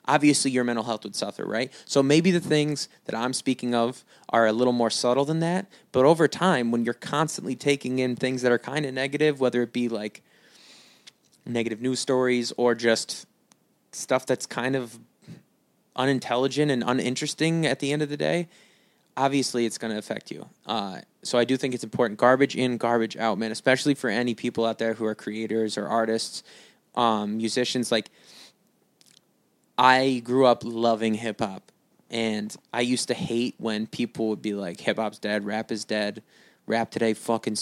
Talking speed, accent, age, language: 180 wpm, American, 20-39, English